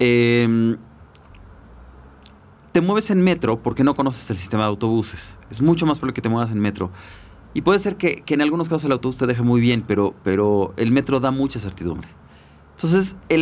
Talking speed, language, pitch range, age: 195 wpm, Spanish, 90-130 Hz, 30-49